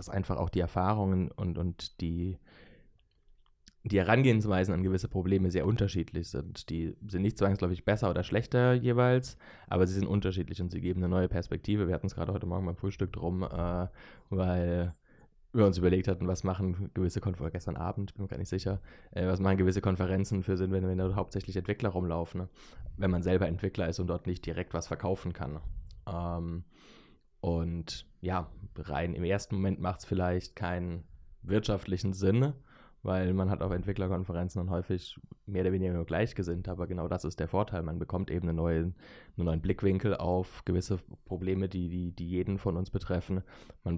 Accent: German